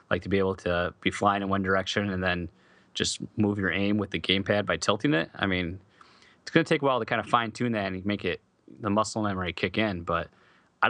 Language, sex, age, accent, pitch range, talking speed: English, male, 20-39, American, 95-115 Hz, 250 wpm